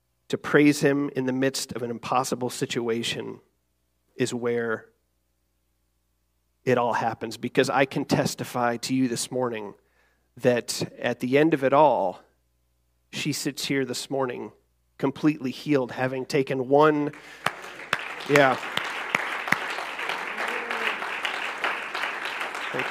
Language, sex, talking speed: English, male, 110 wpm